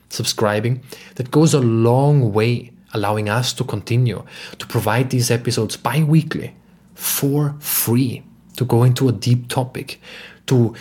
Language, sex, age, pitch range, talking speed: English, male, 30-49, 110-135 Hz, 135 wpm